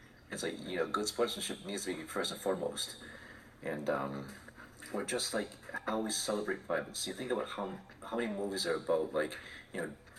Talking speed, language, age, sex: 195 wpm, English, 40-59, male